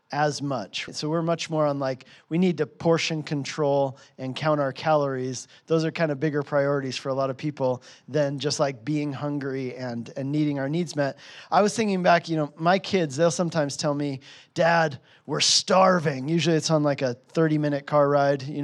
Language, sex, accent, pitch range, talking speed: English, male, American, 145-175 Hz, 205 wpm